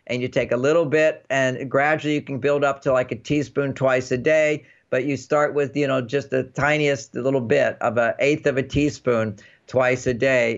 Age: 50-69